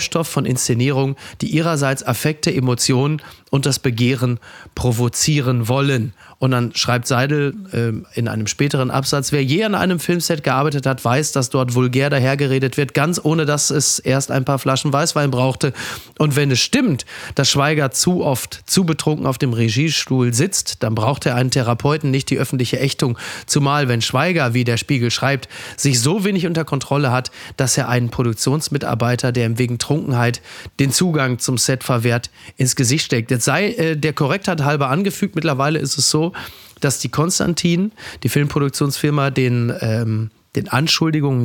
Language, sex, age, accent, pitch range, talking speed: German, male, 30-49, German, 130-150 Hz, 165 wpm